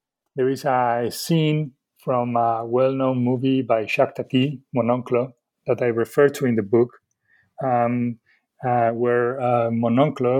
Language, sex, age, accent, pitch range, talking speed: English, male, 30-49, Spanish, 115-130 Hz, 140 wpm